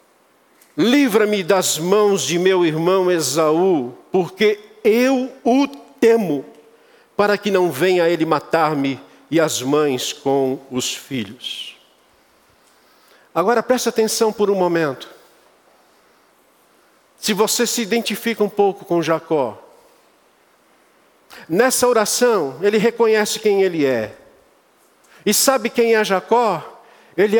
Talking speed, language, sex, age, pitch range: 110 wpm, Portuguese, male, 50-69, 190-260 Hz